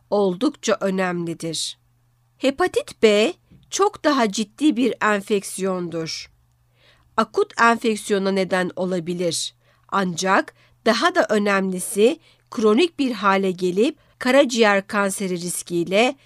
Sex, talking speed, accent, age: female, 90 wpm, native, 60-79